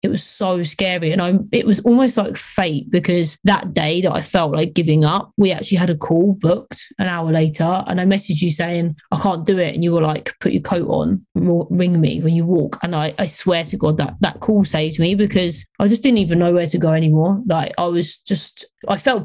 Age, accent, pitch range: 20-39, British, 170-195 Hz